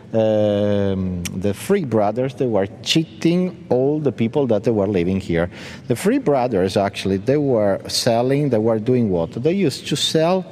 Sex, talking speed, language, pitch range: male, 170 wpm, German, 115-140 Hz